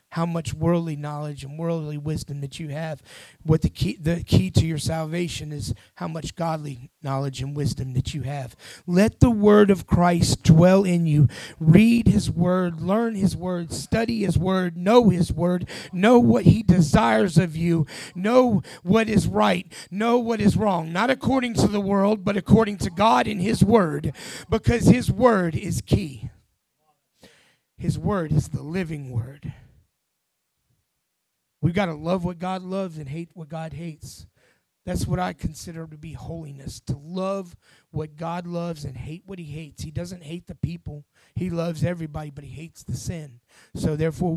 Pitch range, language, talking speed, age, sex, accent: 145-185 Hz, English, 175 wpm, 30-49, male, American